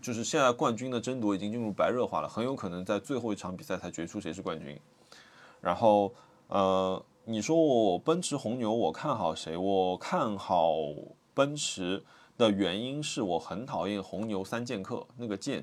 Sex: male